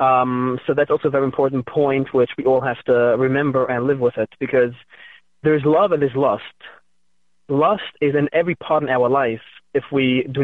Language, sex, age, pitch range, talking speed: English, male, 20-39, 120-140 Hz, 200 wpm